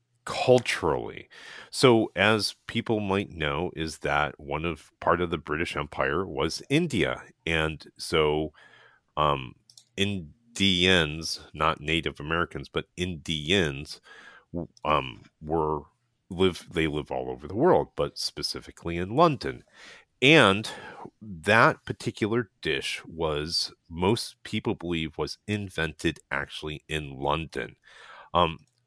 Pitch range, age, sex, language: 80-110 Hz, 40-59, male, English